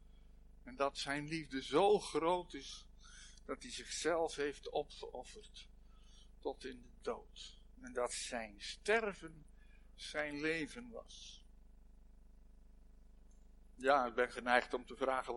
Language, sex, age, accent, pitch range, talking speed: Dutch, male, 60-79, Dutch, 135-195 Hz, 115 wpm